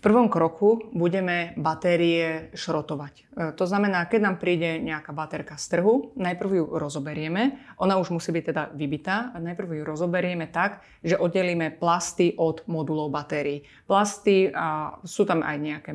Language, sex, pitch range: Slovak, female, 160-190 Hz